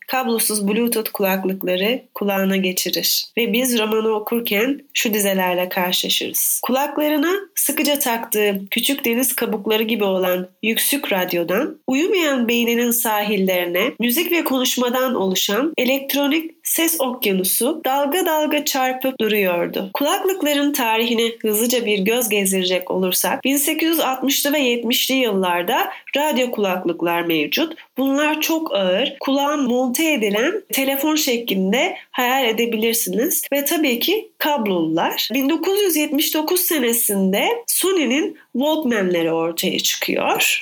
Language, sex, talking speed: Turkish, female, 105 wpm